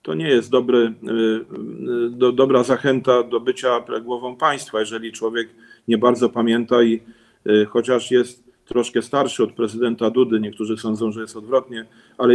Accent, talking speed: native, 145 wpm